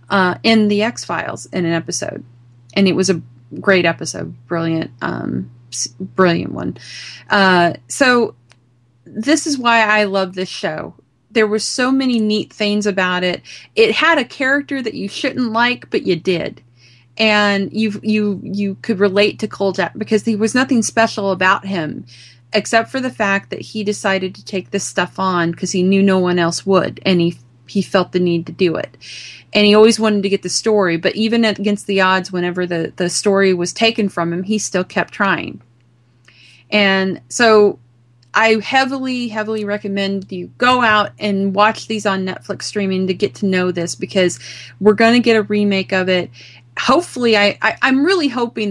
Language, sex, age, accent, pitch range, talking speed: English, female, 30-49, American, 175-215 Hz, 185 wpm